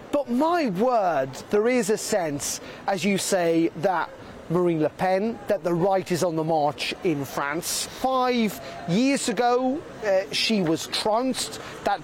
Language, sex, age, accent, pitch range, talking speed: English, male, 30-49, British, 175-230 Hz, 155 wpm